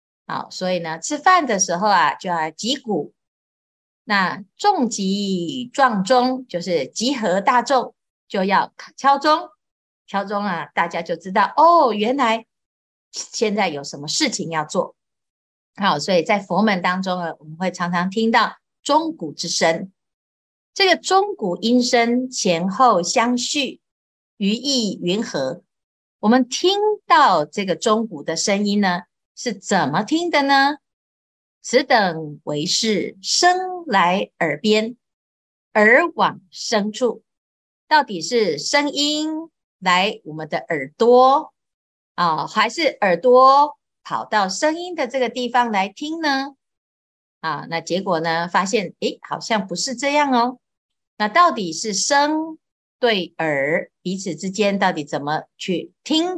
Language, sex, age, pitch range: Chinese, female, 50-69, 175-270 Hz